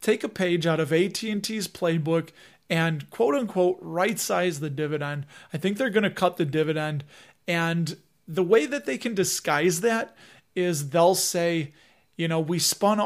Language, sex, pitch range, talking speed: English, male, 155-190 Hz, 160 wpm